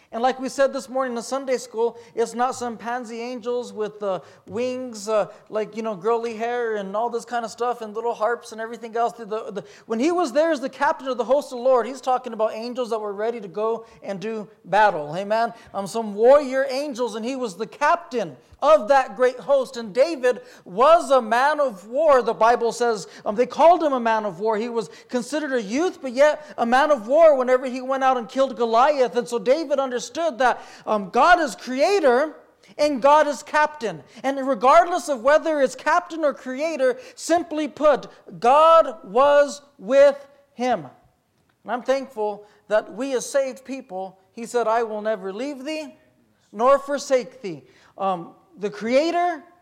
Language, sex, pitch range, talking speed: English, male, 225-285 Hz, 190 wpm